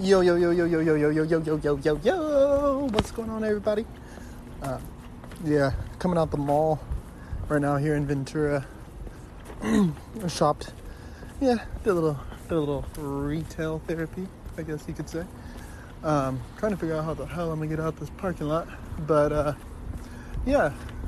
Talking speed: 175 wpm